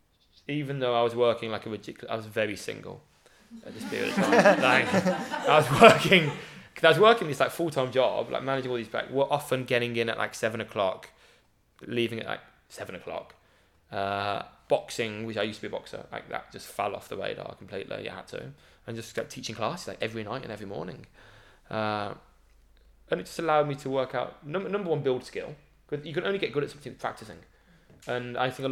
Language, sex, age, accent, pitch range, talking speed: English, male, 20-39, British, 110-150 Hz, 220 wpm